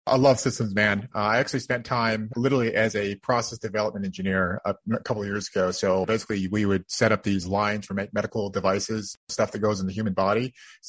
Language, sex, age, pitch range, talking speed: English, male, 30-49, 100-115 Hz, 220 wpm